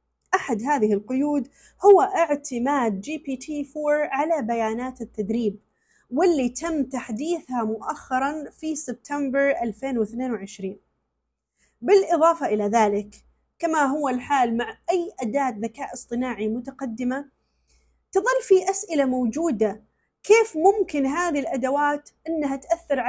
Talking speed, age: 100 wpm, 30-49